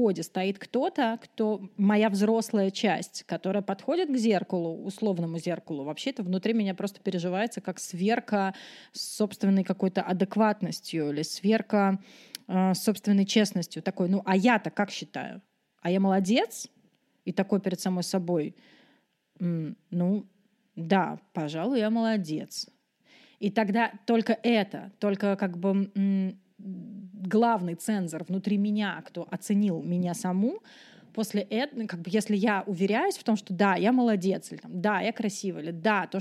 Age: 30-49